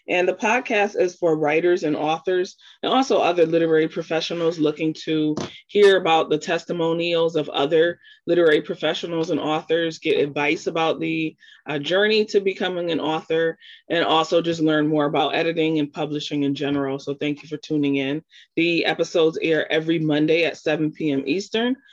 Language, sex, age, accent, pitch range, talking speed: English, female, 20-39, American, 150-175 Hz, 165 wpm